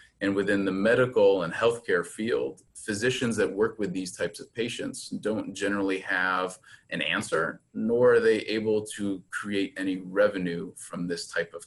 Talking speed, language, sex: 165 wpm, English, male